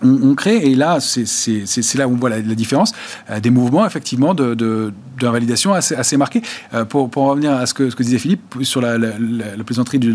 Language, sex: French, male